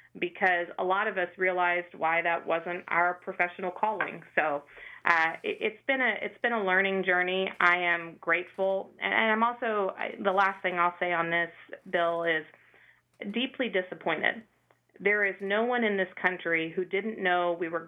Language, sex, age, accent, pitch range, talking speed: English, female, 30-49, American, 175-205 Hz, 180 wpm